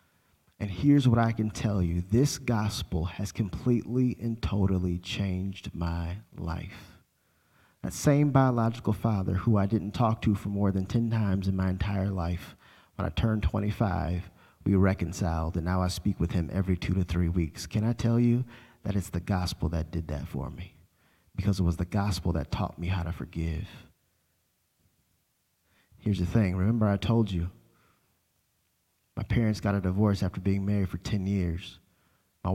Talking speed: 175 wpm